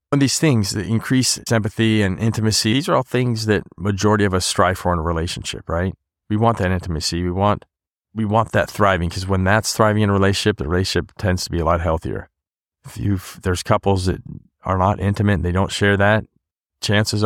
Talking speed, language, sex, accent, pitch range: 210 wpm, English, male, American, 85-110 Hz